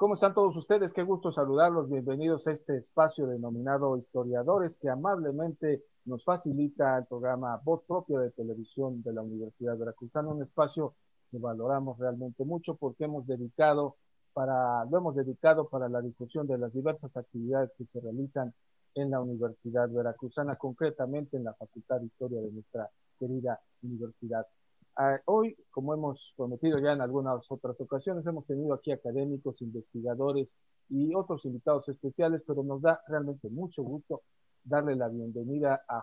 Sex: male